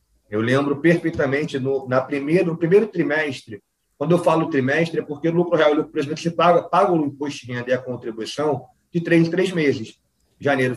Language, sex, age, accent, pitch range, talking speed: Portuguese, male, 40-59, Brazilian, 130-165 Hz, 195 wpm